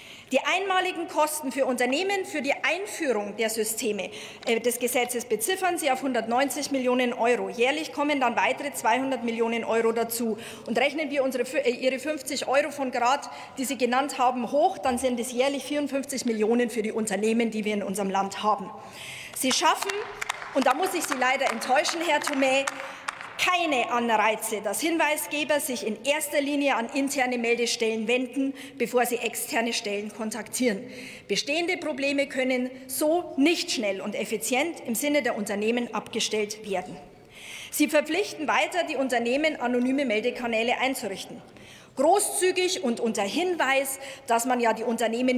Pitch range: 230-285 Hz